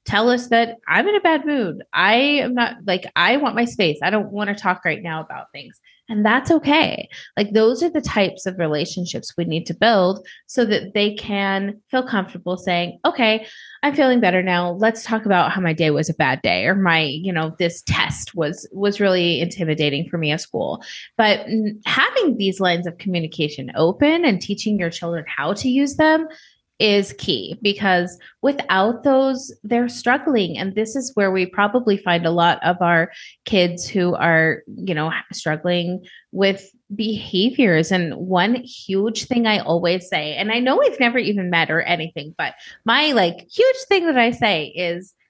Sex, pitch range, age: female, 175-240 Hz, 30-49